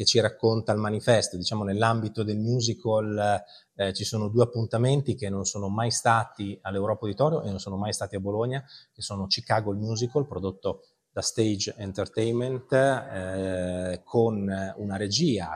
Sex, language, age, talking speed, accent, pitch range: male, Italian, 30-49, 155 wpm, native, 95-115 Hz